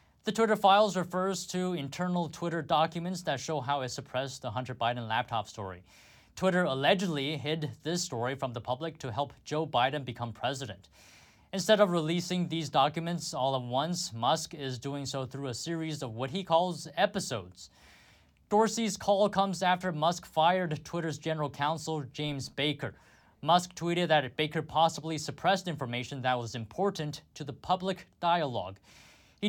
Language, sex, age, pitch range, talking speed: English, male, 20-39, 130-175 Hz, 160 wpm